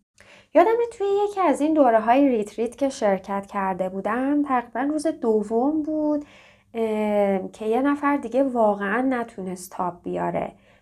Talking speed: 135 wpm